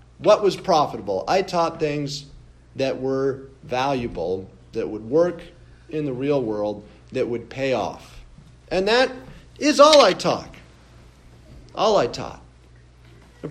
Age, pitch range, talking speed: 50-69, 120-185 Hz, 135 wpm